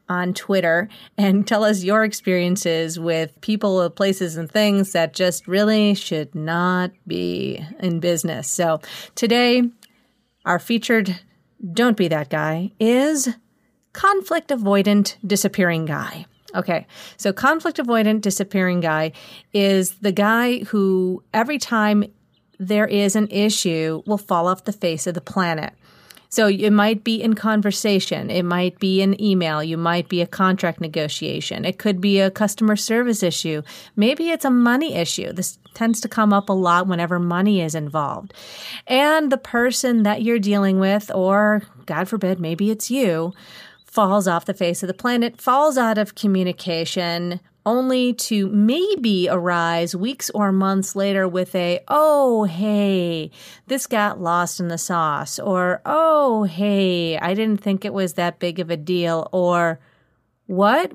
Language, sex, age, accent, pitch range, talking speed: English, female, 40-59, American, 175-220 Hz, 150 wpm